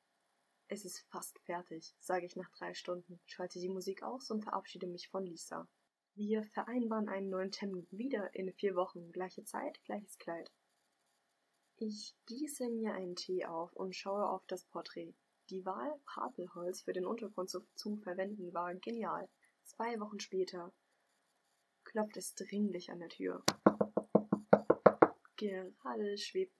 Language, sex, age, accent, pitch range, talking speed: German, female, 10-29, German, 180-210 Hz, 140 wpm